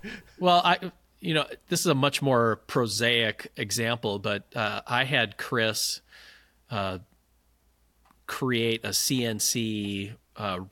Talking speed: 120 wpm